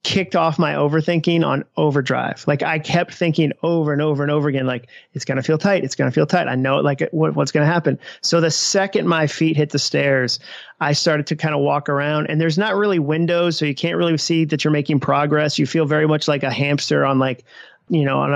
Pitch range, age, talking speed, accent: 145-175 Hz, 30-49, 245 wpm, American